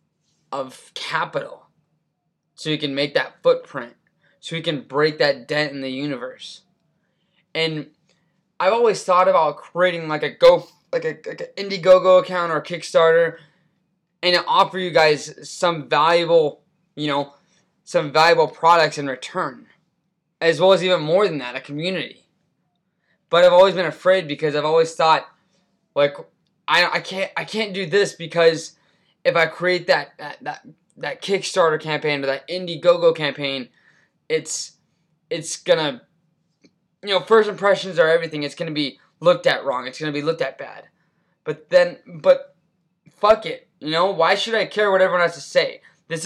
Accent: American